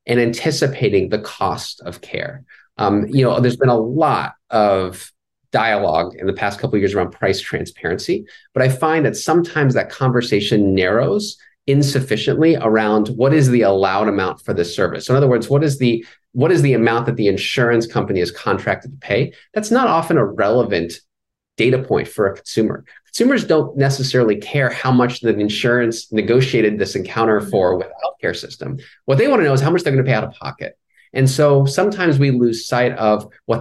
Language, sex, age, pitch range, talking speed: English, male, 30-49, 115-155 Hz, 195 wpm